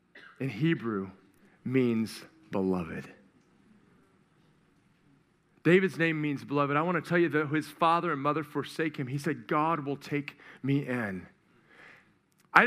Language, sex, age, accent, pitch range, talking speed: English, male, 40-59, American, 190-300 Hz, 135 wpm